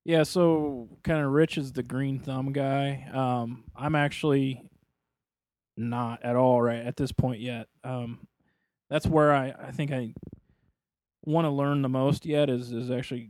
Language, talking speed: English, 165 wpm